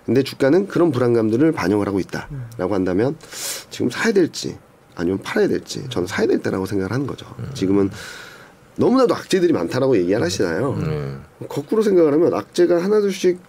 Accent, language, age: native, Korean, 40-59